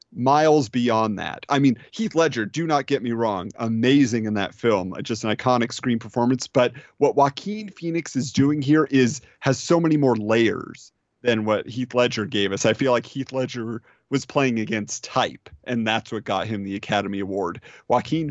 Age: 30-49